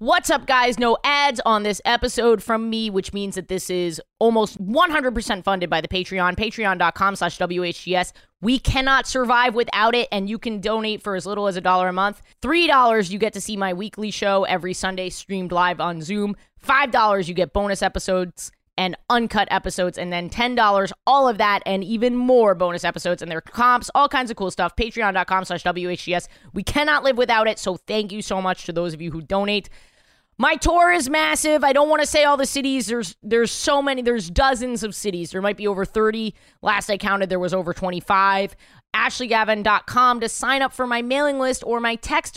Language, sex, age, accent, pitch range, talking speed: English, female, 20-39, American, 185-245 Hz, 205 wpm